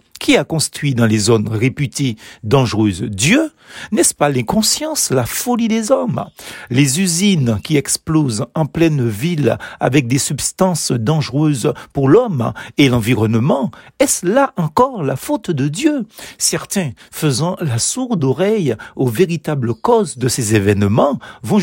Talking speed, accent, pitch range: 140 wpm, French, 130-185 Hz